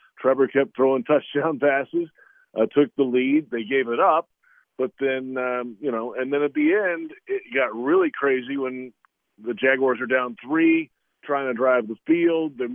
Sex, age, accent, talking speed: male, 40-59, American, 185 wpm